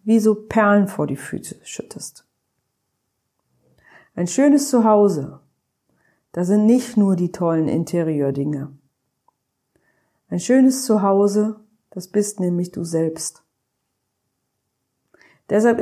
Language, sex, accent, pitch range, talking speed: German, female, German, 165-215 Hz, 100 wpm